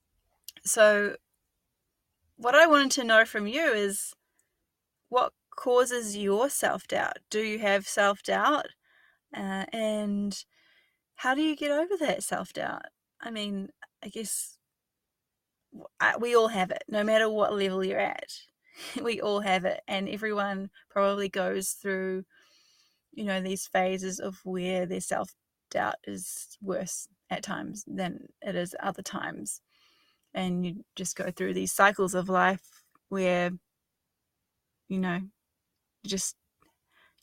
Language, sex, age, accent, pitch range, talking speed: English, female, 20-39, Australian, 185-225 Hz, 130 wpm